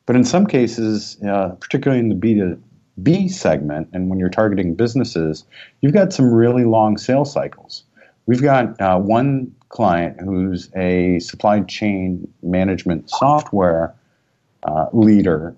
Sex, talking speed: male, 135 wpm